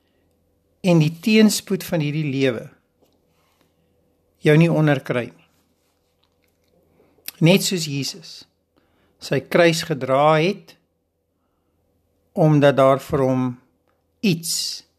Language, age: English, 60-79